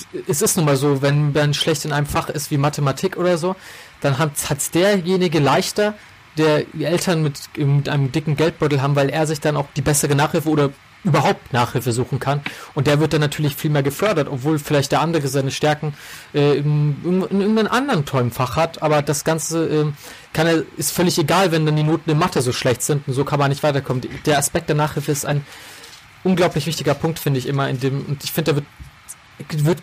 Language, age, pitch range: German, 30-49, 140-160 Hz